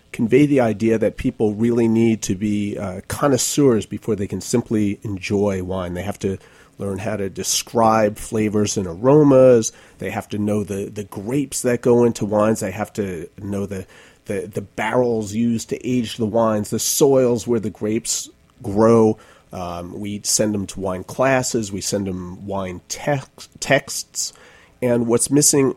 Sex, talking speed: male, 165 wpm